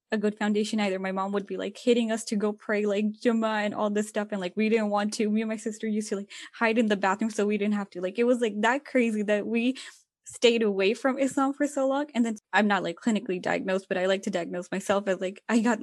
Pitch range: 195-235 Hz